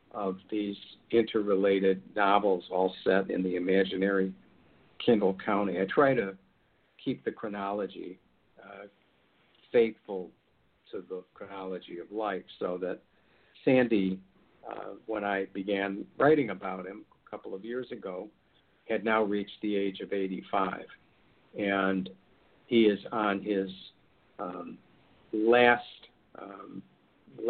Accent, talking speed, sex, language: American, 120 wpm, male, English